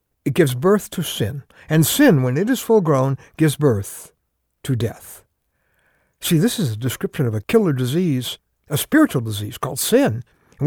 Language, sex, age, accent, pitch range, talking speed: English, male, 60-79, American, 150-210 Hz, 175 wpm